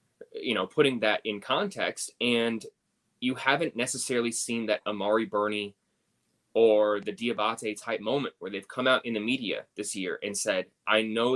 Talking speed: 170 wpm